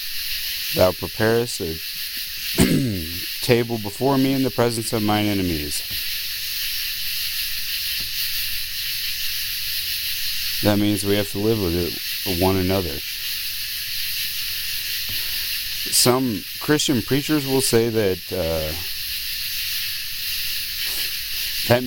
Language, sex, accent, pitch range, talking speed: English, male, American, 90-115 Hz, 80 wpm